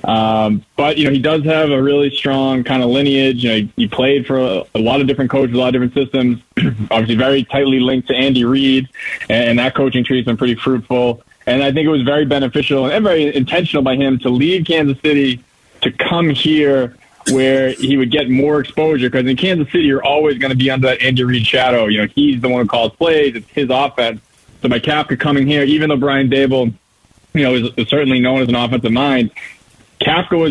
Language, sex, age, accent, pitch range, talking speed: English, male, 20-39, American, 120-140 Hz, 230 wpm